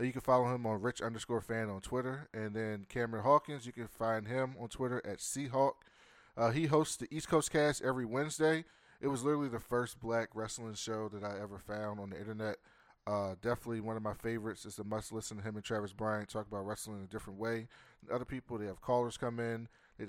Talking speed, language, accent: 225 wpm, English, American